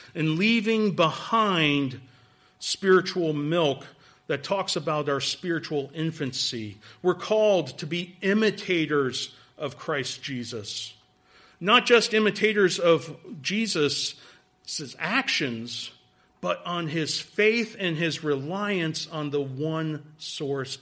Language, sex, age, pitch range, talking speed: English, male, 40-59, 135-190 Hz, 105 wpm